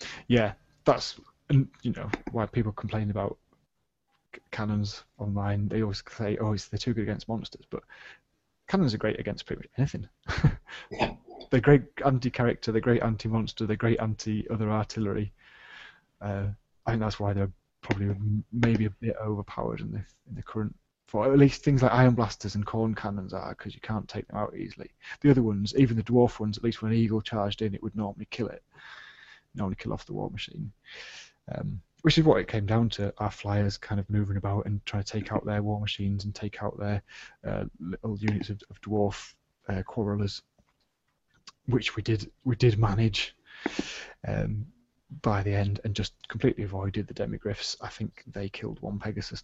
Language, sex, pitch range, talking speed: English, male, 100-115 Hz, 185 wpm